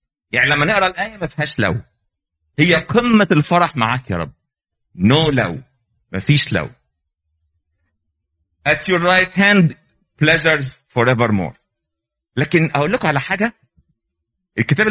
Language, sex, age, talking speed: Arabic, male, 50-69, 125 wpm